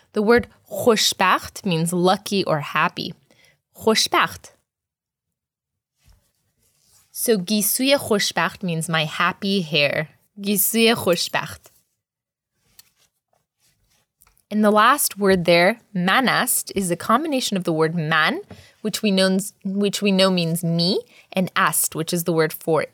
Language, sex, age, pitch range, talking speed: English, female, 20-39, 170-220 Hz, 105 wpm